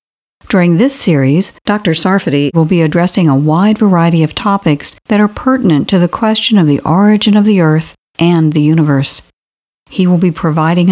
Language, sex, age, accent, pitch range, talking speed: English, female, 50-69, American, 160-210 Hz, 175 wpm